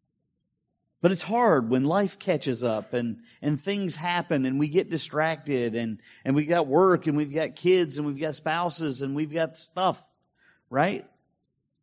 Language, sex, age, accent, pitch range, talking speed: English, male, 40-59, American, 145-180 Hz, 165 wpm